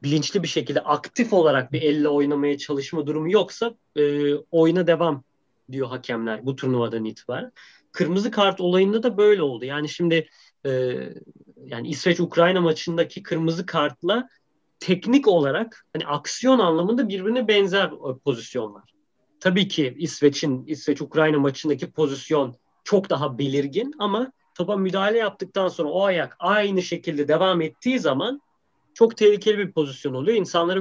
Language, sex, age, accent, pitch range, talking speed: Turkish, male, 30-49, native, 140-185 Hz, 135 wpm